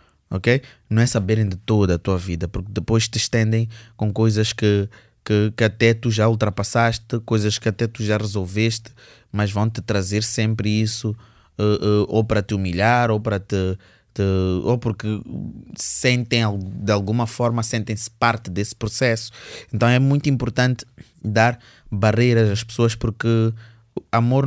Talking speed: 140 wpm